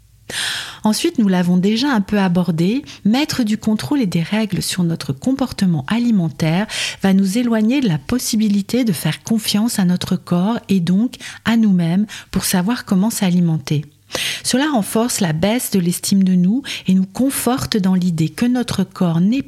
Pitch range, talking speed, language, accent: 180-230 Hz, 165 wpm, French, French